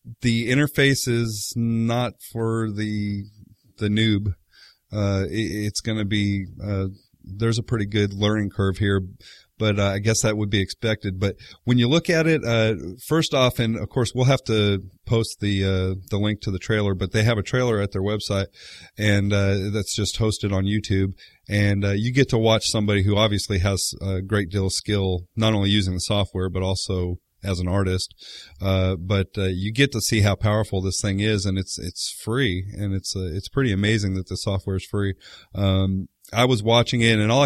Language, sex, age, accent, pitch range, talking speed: English, male, 30-49, American, 95-115 Hz, 205 wpm